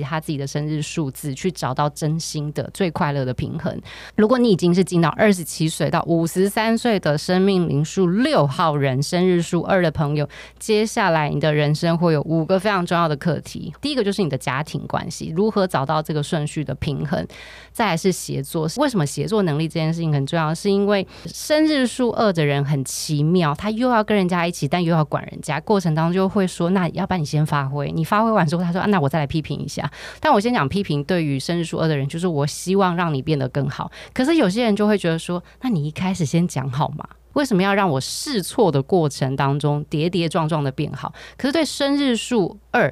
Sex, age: female, 20-39